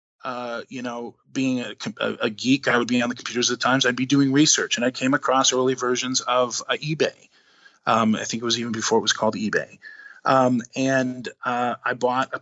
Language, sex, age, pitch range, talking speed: English, male, 30-49, 125-145 Hz, 220 wpm